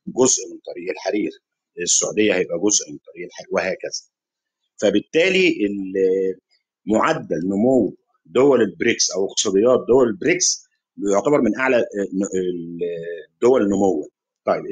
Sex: male